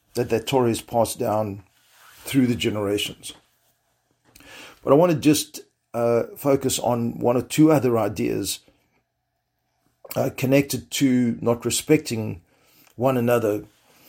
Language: English